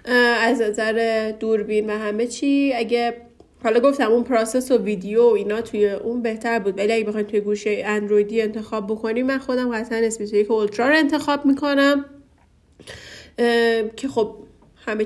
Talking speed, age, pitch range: 145 wpm, 30-49, 210-255 Hz